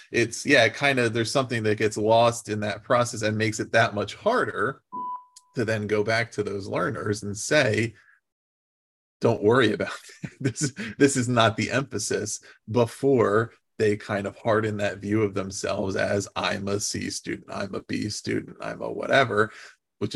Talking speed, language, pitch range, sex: 175 wpm, English, 100-120 Hz, male